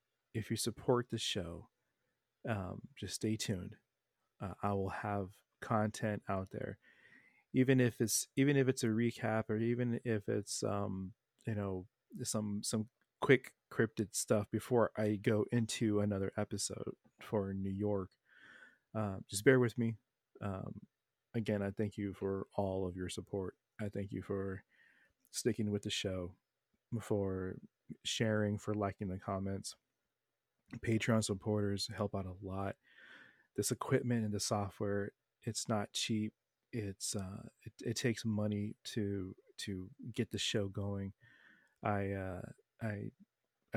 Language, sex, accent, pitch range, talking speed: English, male, American, 100-115 Hz, 140 wpm